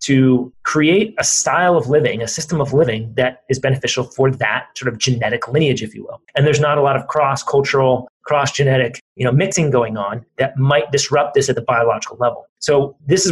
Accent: American